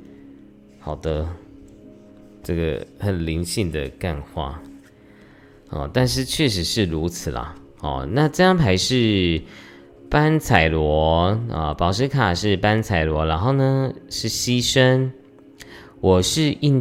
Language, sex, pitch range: Chinese, male, 80-115 Hz